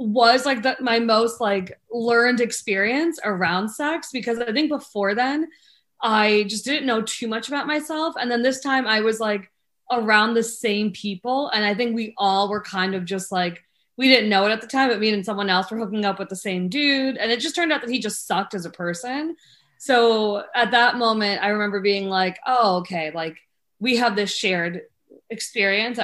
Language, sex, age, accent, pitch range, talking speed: English, female, 20-39, American, 200-255 Hz, 205 wpm